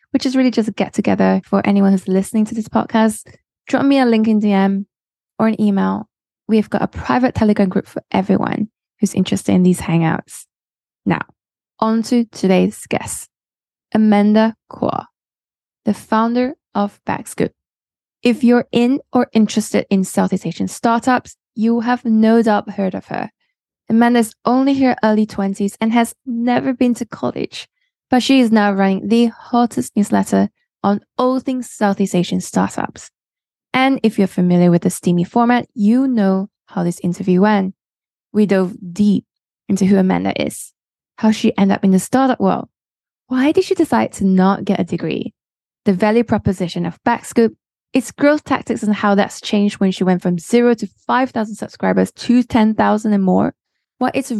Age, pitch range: 10-29, 195-240 Hz